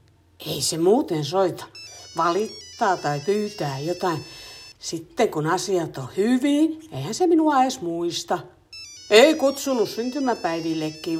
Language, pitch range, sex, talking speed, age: Finnish, 150-235 Hz, female, 115 wpm, 60-79